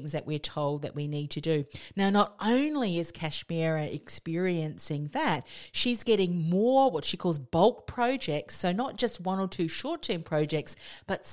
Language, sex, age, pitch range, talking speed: English, female, 40-59, 145-185 Hz, 170 wpm